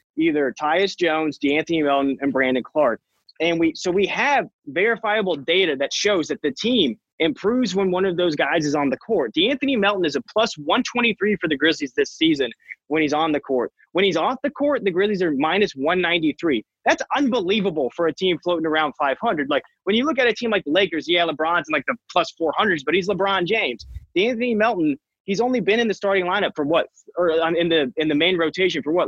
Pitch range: 155-210 Hz